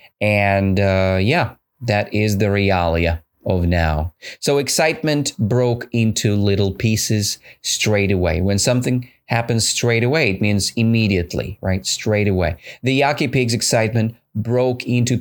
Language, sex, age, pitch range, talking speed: English, male, 30-49, 100-135 Hz, 135 wpm